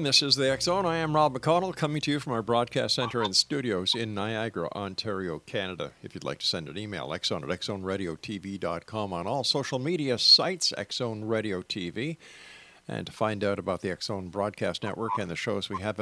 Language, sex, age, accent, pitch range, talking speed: English, male, 50-69, American, 95-140 Hz, 200 wpm